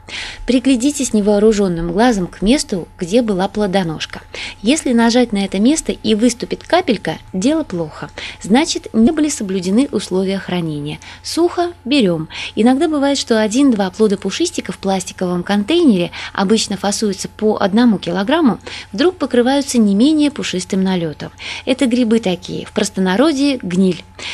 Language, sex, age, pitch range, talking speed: Russian, female, 20-39, 190-275 Hz, 130 wpm